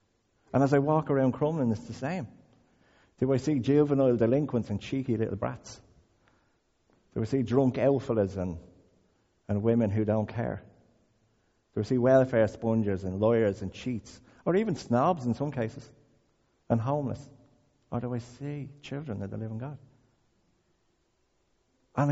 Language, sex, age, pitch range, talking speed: English, male, 50-69, 115-145 Hz, 155 wpm